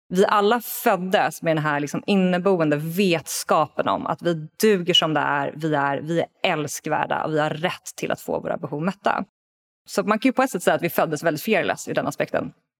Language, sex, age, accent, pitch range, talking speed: Swedish, female, 20-39, native, 160-200 Hz, 220 wpm